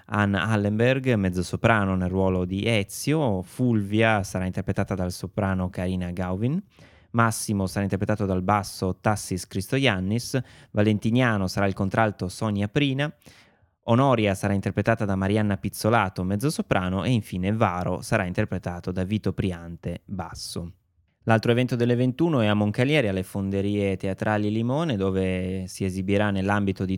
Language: Italian